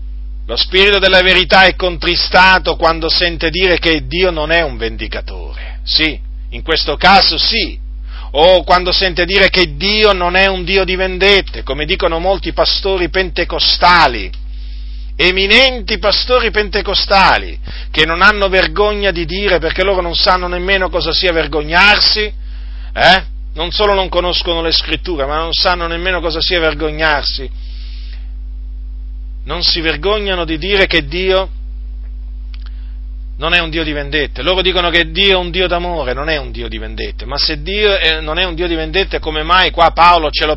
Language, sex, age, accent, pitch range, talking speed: Italian, male, 40-59, native, 155-190 Hz, 165 wpm